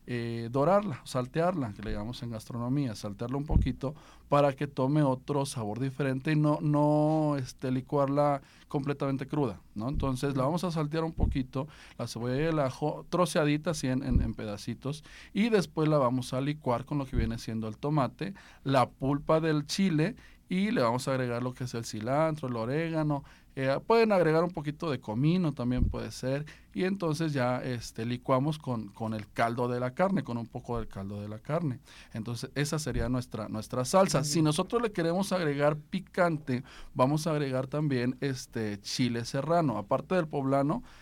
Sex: male